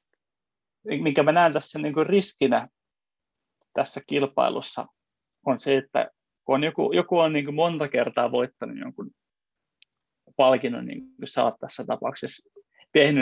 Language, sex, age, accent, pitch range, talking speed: Finnish, male, 20-39, native, 130-155 Hz, 105 wpm